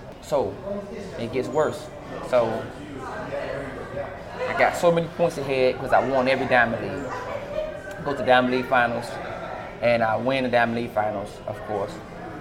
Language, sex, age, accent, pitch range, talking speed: English, male, 20-39, American, 110-135 Hz, 160 wpm